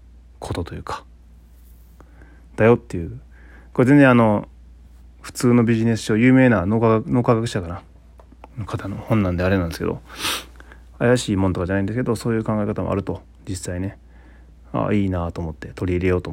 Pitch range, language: 65-100 Hz, Japanese